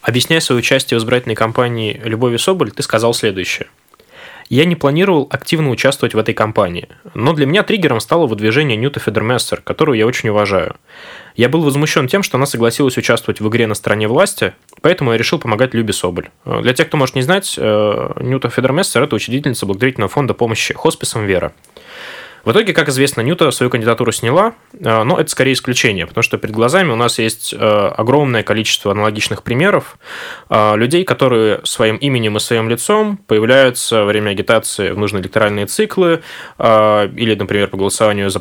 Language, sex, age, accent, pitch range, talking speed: Russian, male, 20-39, native, 110-140 Hz, 170 wpm